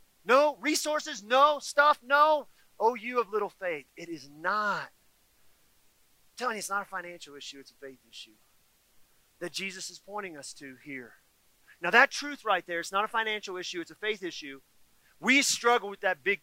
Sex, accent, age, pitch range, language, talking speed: male, American, 40-59, 180-255 Hz, English, 185 wpm